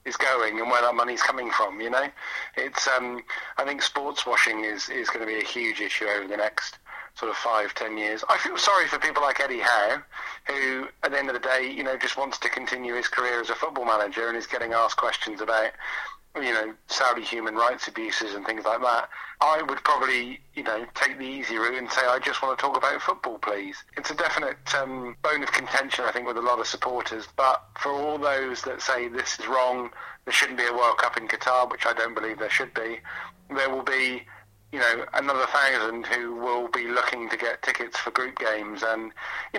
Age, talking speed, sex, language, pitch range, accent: 40-59, 230 wpm, male, English, 115-135 Hz, British